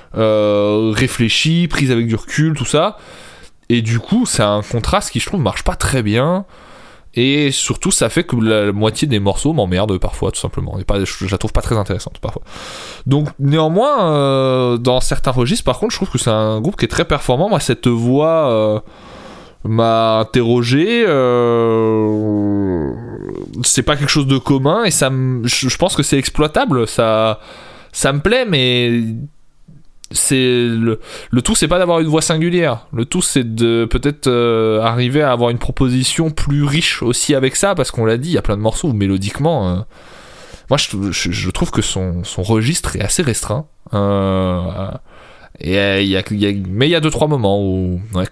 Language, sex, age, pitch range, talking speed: French, male, 20-39, 105-145 Hz, 185 wpm